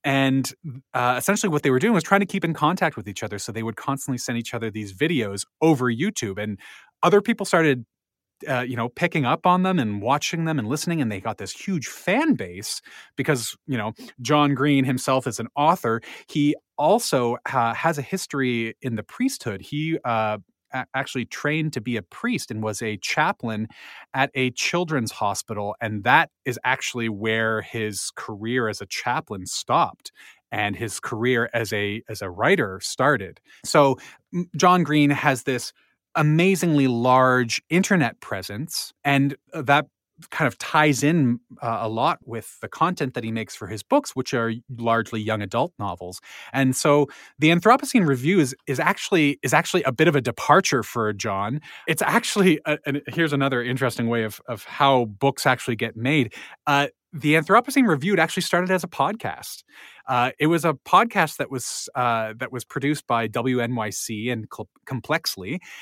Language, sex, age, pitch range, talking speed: English, male, 30-49, 115-155 Hz, 175 wpm